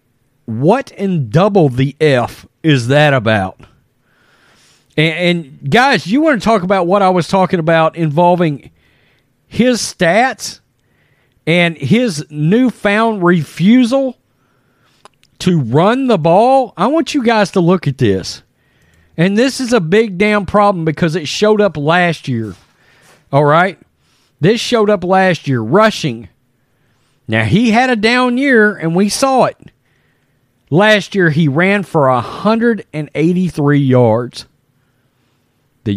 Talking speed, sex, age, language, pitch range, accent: 130 wpm, male, 40-59, English, 125-200 Hz, American